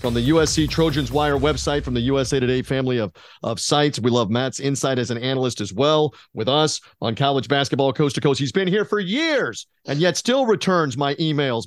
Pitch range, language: 130-175 Hz, English